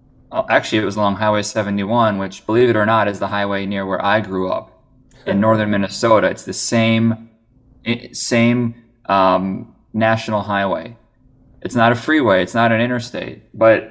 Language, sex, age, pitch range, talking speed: English, male, 20-39, 100-120 Hz, 165 wpm